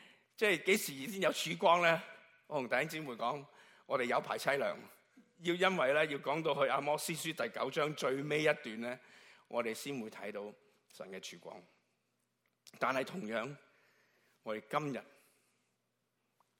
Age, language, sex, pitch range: 50-69, Chinese, male, 140-185 Hz